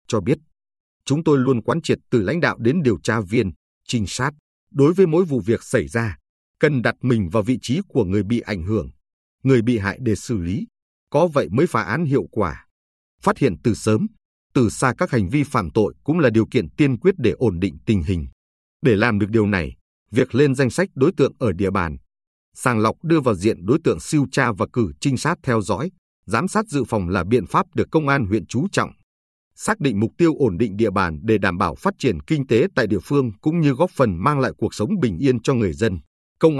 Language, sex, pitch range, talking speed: Vietnamese, male, 100-140 Hz, 235 wpm